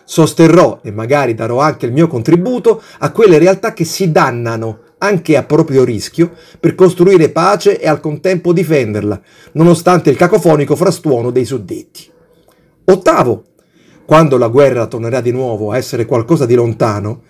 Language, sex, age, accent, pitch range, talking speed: Italian, male, 40-59, native, 125-175 Hz, 150 wpm